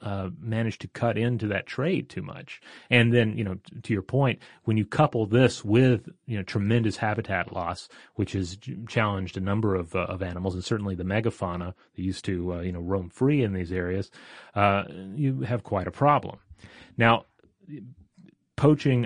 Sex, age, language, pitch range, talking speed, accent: male, 30-49, English, 95-120 Hz, 190 wpm, American